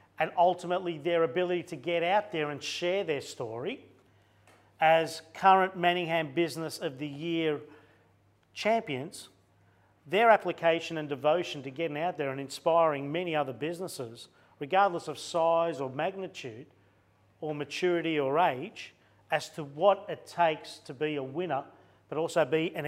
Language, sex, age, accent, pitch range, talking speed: English, male, 40-59, Australian, 135-175 Hz, 145 wpm